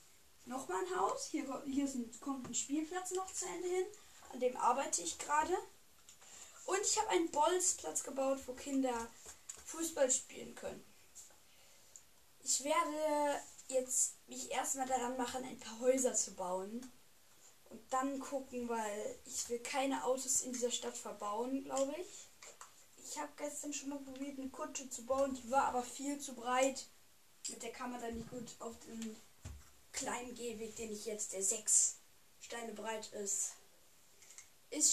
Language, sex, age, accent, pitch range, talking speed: German, female, 10-29, German, 230-275 Hz, 155 wpm